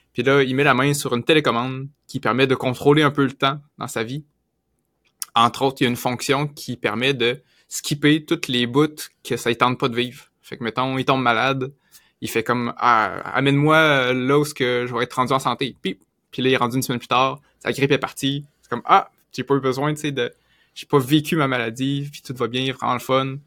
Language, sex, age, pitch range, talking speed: French, male, 20-39, 120-145 Hz, 255 wpm